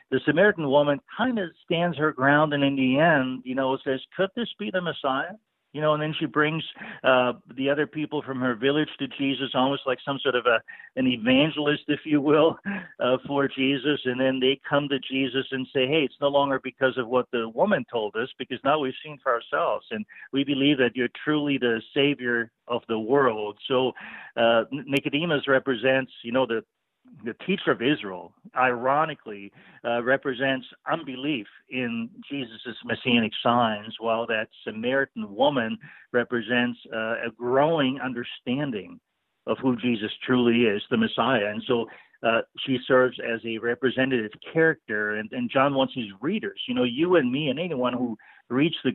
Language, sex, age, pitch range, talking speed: English, male, 50-69, 120-150 Hz, 175 wpm